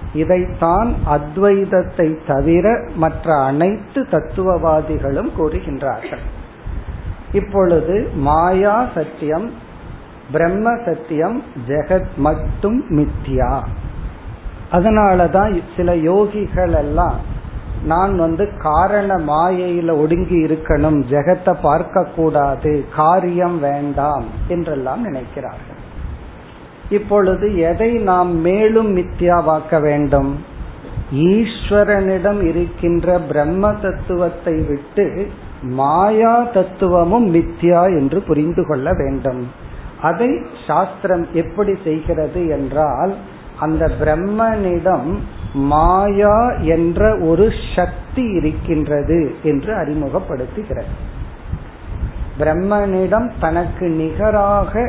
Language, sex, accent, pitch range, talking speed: Tamil, male, native, 150-190 Hz, 50 wpm